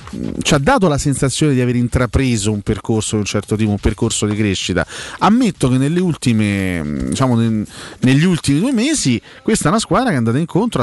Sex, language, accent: male, Italian, native